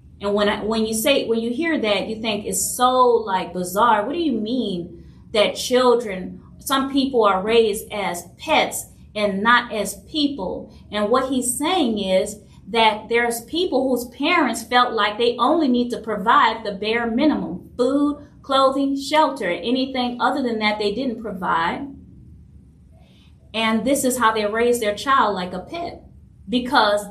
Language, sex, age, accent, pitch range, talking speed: English, female, 30-49, American, 195-250 Hz, 165 wpm